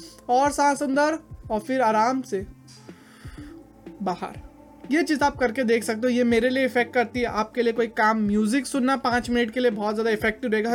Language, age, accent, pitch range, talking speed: Hindi, 20-39, native, 230-280 Hz, 190 wpm